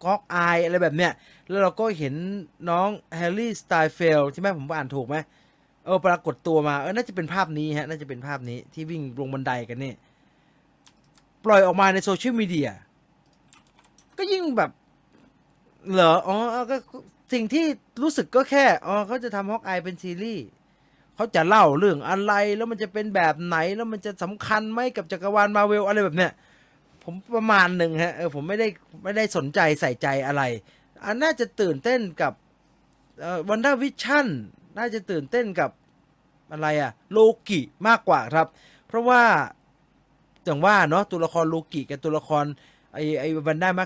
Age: 20-39